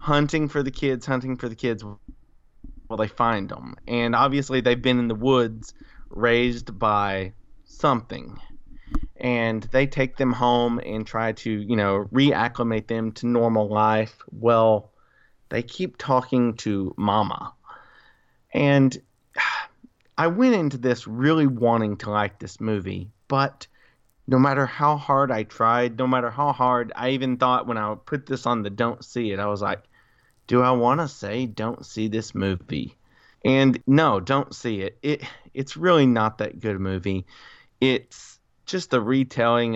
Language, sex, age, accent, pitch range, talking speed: English, male, 30-49, American, 110-130 Hz, 160 wpm